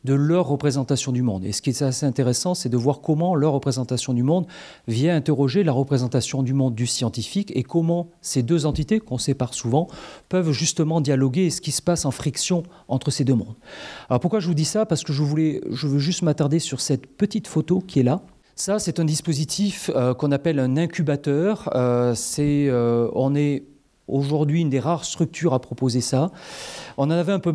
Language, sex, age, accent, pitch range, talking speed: French, male, 40-59, French, 130-165 Hz, 210 wpm